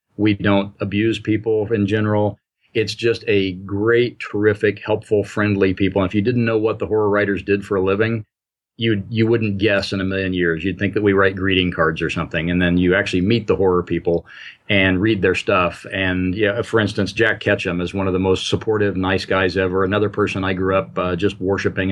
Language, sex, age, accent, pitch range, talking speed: English, male, 40-59, American, 95-105 Hz, 215 wpm